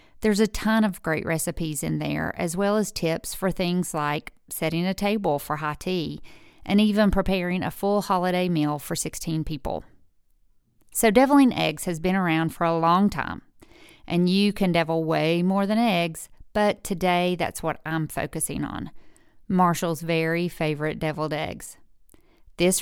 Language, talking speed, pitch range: English, 165 wpm, 160-195 Hz